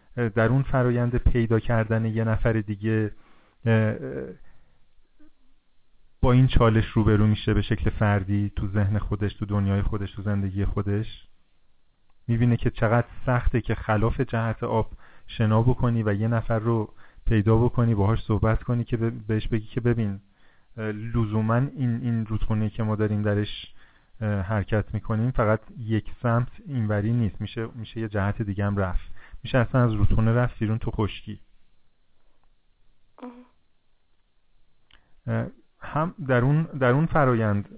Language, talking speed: Persian, 130 wpm